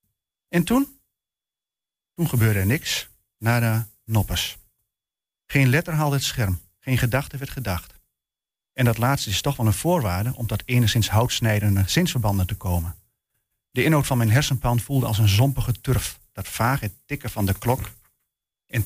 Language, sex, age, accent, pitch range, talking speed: Dutch, male, 40-59, Dutch, 105-135 Hz, 160 wpm